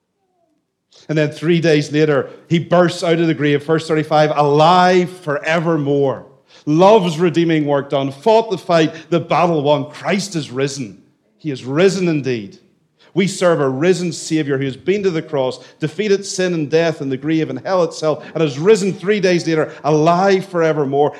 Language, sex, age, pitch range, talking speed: English, male, 40-59, 130-165 Hz, 175 wpm